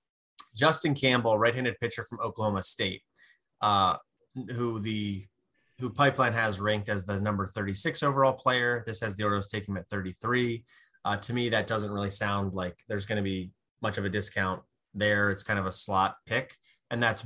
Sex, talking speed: male, 185 wpm